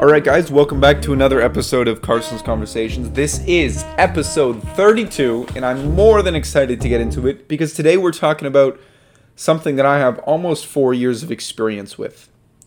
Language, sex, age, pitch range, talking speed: English, male, 20-39, 120-155 Hz, 180 wpm